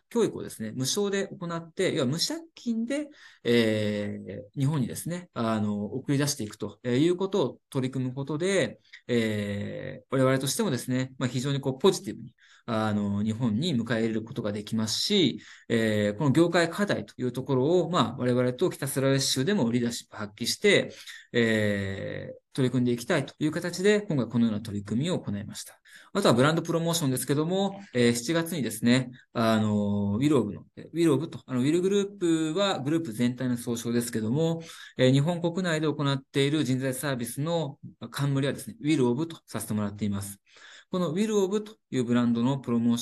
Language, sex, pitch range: Japanese, male, 110-155 Hz